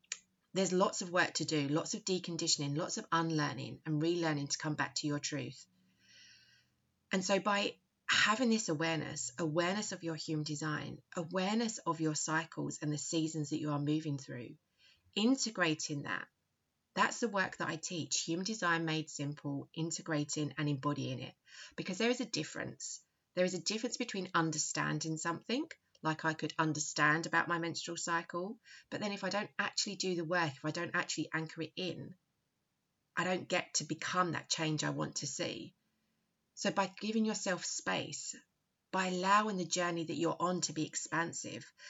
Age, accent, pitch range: 30-49, British, 155-190 Hz